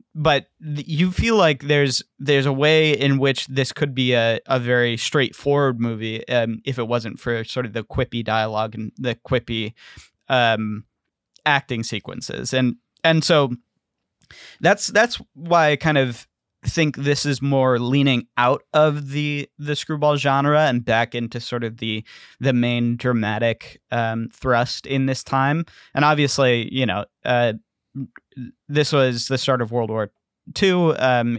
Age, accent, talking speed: 20-39, American, 155 wpm